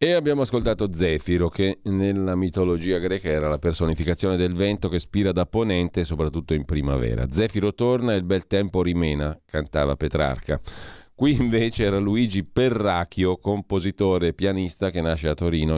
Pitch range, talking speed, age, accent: 85-105 Hz, 155 wpm, 40-59, native